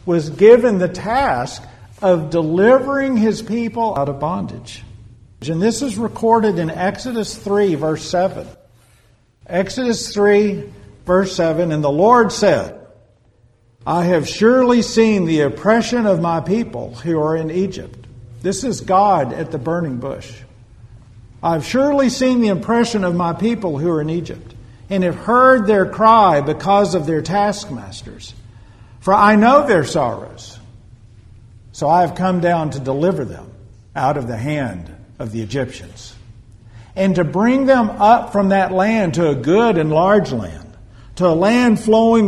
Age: 50-69